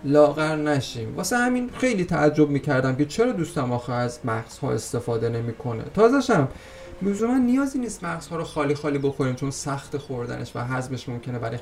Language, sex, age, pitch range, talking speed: Persian, male, 30-49, 125-200 Hz, 175 wpm